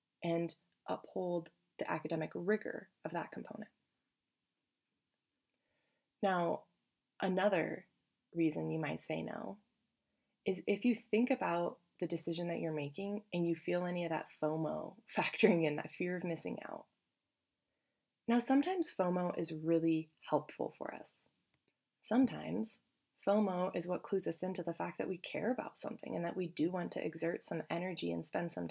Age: 20-39